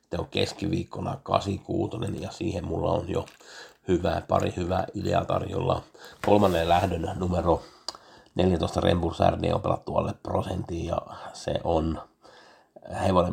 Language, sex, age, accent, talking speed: Finnish, male, 60-79, native, 120 wpm